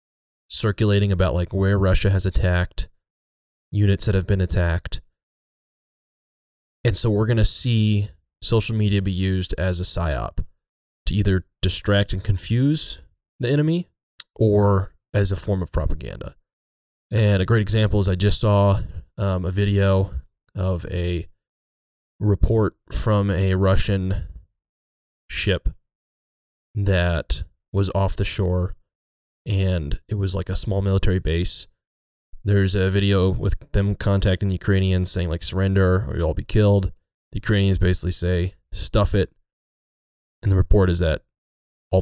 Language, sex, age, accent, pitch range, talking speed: English, male, 20-39, American, 85-100 Hz, 135 wpm